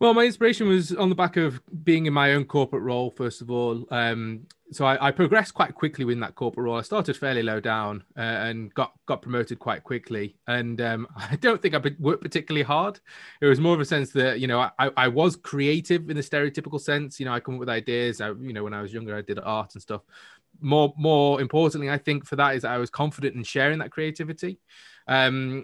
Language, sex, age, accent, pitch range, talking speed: English, male, 20-39, British, 115-145 Hz, 235 wpm